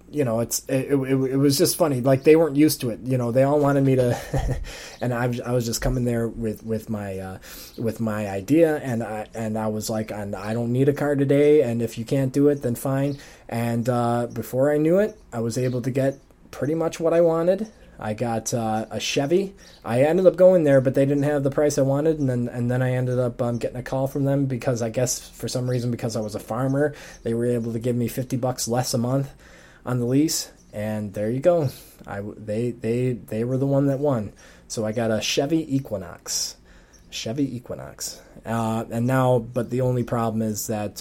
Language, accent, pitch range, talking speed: English, American, 110-135 Hz, 235 wpm